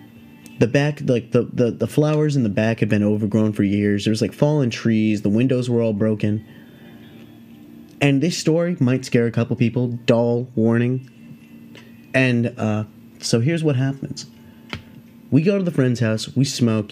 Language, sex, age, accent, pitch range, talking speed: English, male, 20-39, American, 110-130 Hz, 175 wpm